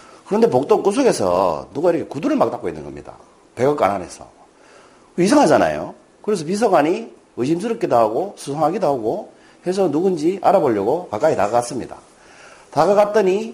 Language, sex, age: Korean, male, 40-59